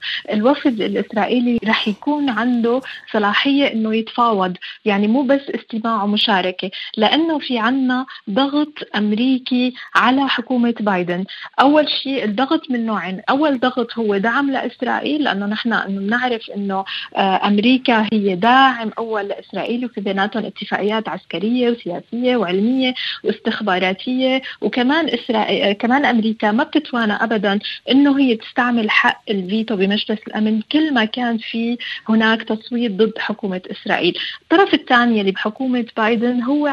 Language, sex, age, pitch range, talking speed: Arabic, female, 30-49, 205-250 Hz, 125 wpm